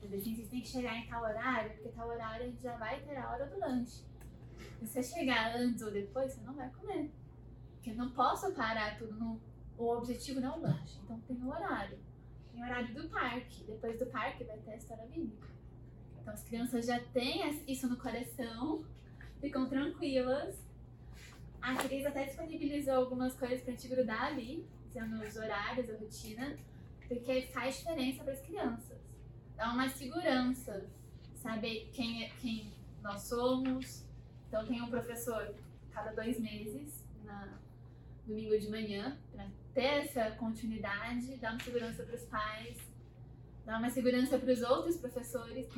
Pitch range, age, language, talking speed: 225-260 Hz, 10-29, Portuguese, 165 wpm